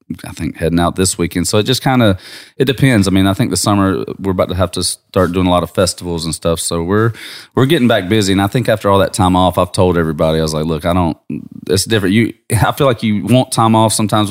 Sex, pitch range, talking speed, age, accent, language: male, 85-100 Hz, 275 wpm, 30-49, American, English